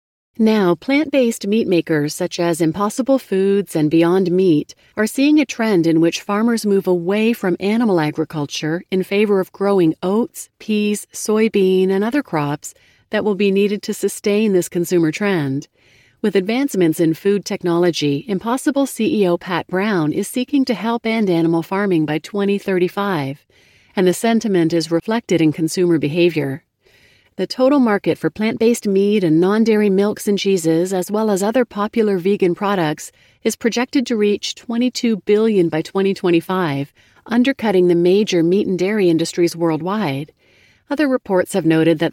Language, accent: English, American